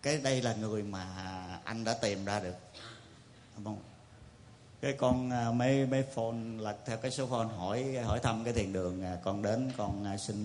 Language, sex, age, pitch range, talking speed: English, male, 30-49, 110-140 Hz, 170 wpm